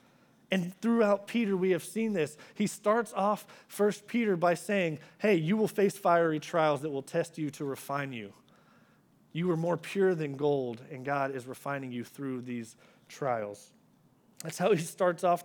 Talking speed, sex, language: 180 wpm, male, English